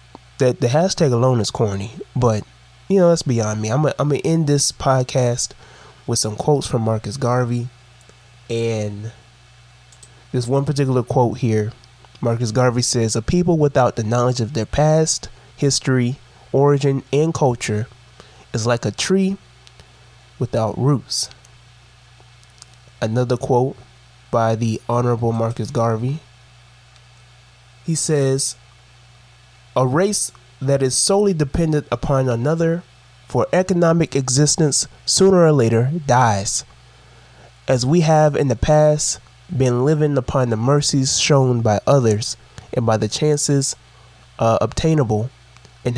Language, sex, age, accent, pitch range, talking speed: English, male, 20-39, American, 120-140 Hz, 125 wpm